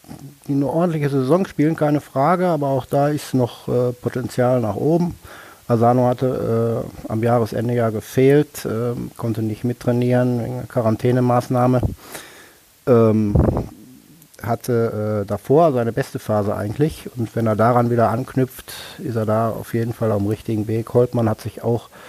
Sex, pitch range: male, 105-125 Hz